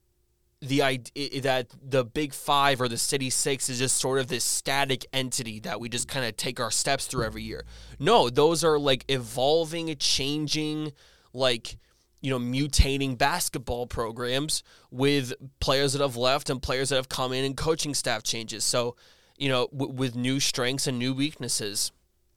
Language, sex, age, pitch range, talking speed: English, male, 20-39, 120-140 Hz, 175 wpm